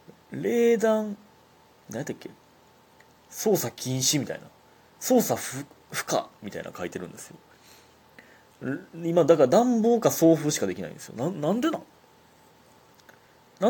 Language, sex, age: Japanese, male, 30-49